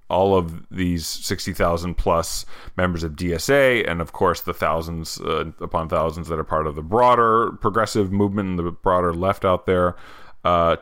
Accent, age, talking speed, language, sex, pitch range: American, 30-49, 170 wpm, English, male, 85-100 Hz